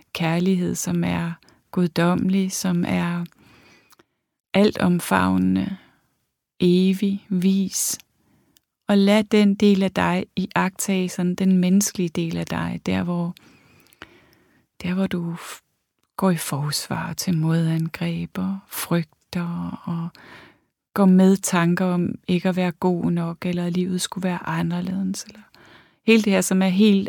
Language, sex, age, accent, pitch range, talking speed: Danish, female, 30-49, native, 175-195 Hz, 125 wpm